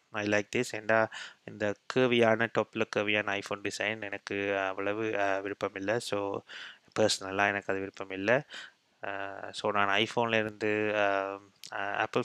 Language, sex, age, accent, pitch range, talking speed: Tamil, male, 20-39, native, 100-115 Hz, 120 wpm